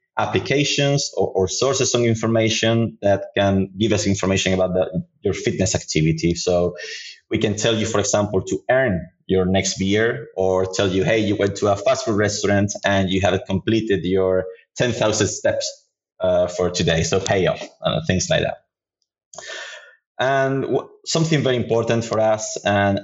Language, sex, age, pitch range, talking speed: English, male, 20-39, 95-115 Hz, 165 wpm